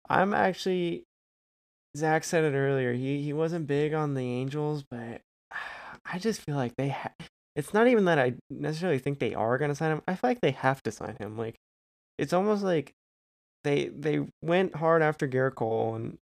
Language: English